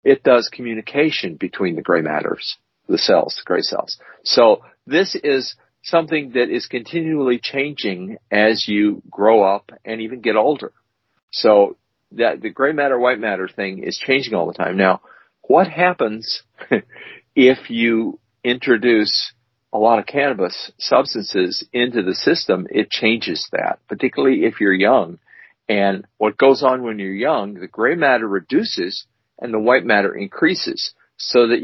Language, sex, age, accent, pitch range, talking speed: English, male, 50-69, American, 105-150 Hz, 150 wpm